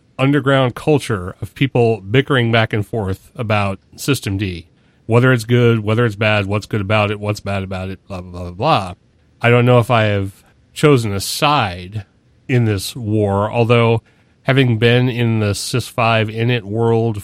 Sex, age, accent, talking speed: male, 40-59, American, 170 wpm